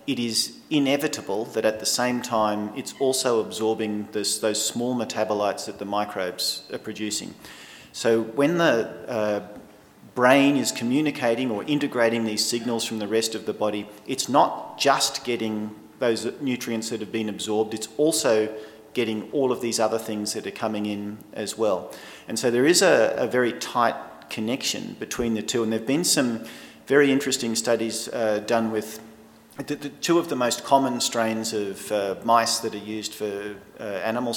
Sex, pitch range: male, 105-120 Hz